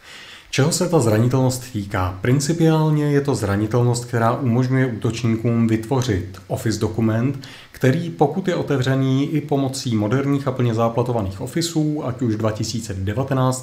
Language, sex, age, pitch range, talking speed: Czech, male, 30-49, 105-130 Hz, 130 wpm